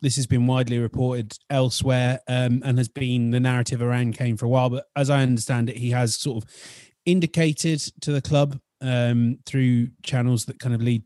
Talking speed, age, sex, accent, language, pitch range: 200 wpm, 30-49, male, British, English, 120-140 Hz